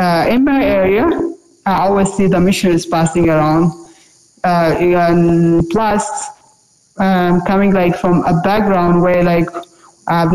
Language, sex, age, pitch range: English, female, 20-39, 170-205 Hz